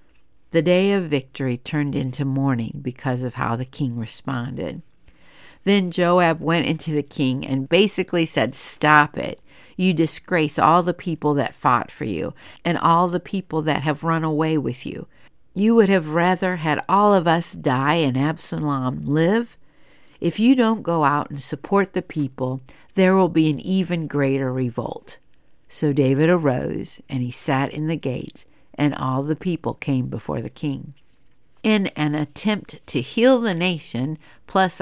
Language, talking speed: English, 165 wpm